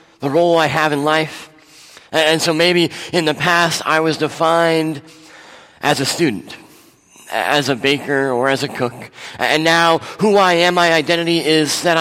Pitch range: 145-170 Hz